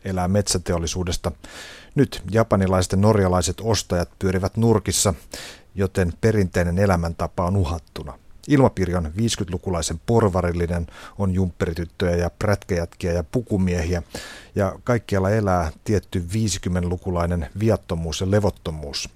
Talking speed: 95 wpm